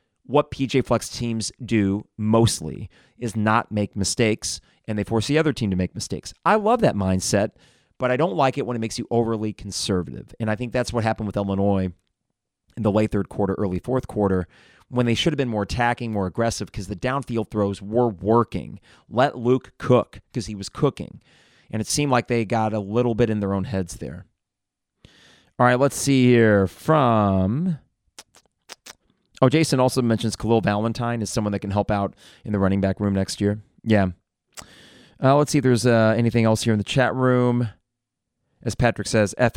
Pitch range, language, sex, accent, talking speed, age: 100-125 Hz, English, male, American, 195 wpm, 30-49